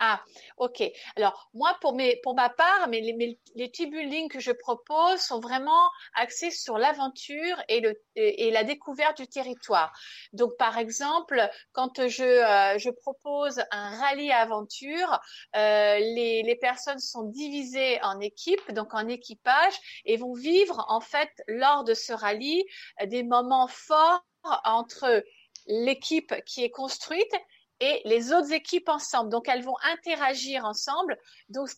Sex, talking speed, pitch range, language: female, 155 wpm, 230-310 Hz, Italian